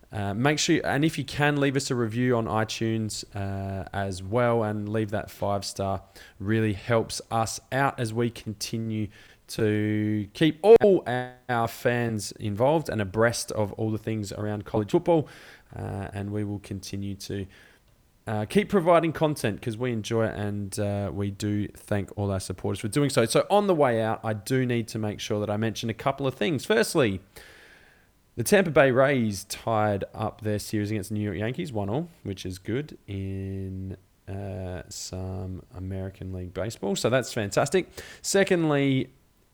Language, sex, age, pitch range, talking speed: English, male, 20-39, 100-135 Hz, 180 wpm